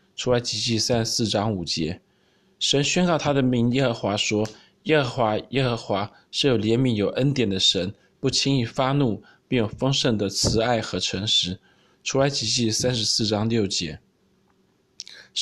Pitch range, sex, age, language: 110-135 Hz, male, 20-39, Chinese